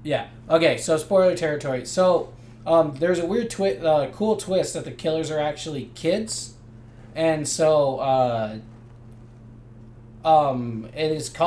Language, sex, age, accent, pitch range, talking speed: English, male, 20-39, American, 125-160 Hz, 130 wpm